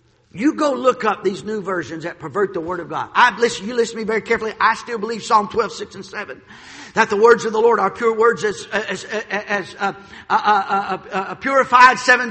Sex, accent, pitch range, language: male, American, 210-270 Hz, English